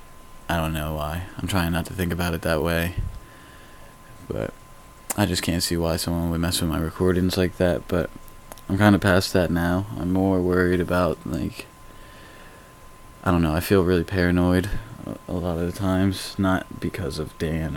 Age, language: 20-39, English